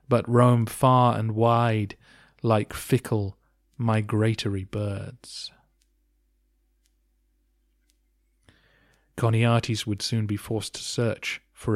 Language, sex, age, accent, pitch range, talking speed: English, male, 30-49, British, 105-125 Hz, 85 wpm